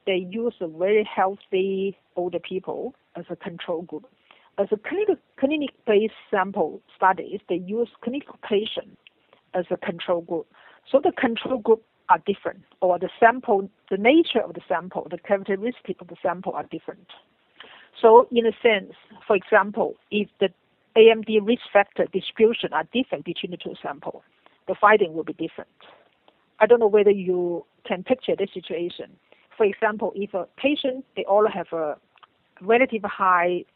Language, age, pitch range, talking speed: English, 50-69, 180-230 Hz, 155 wpm